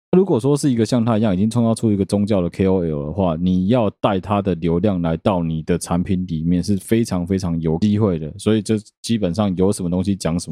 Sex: male